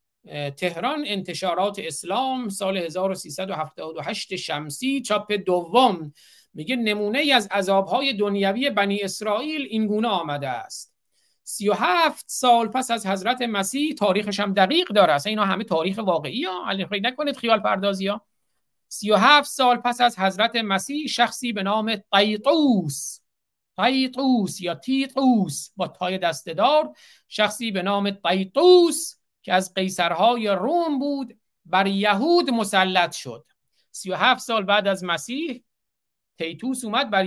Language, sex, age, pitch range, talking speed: Persian, male, 50-69, 180-245 Hz, 130 wpm